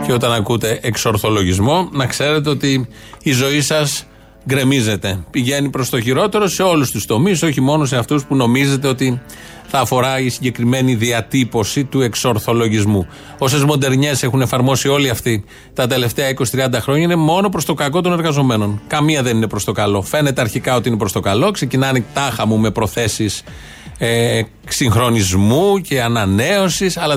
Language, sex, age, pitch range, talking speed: Greek, male, 30-49, 115-145 Hz, 160 wpm